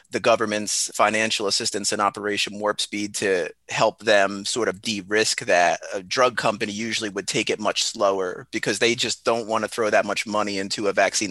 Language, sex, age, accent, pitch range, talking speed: English, male, 30-49, American, 100-110 Hz, 195 wpm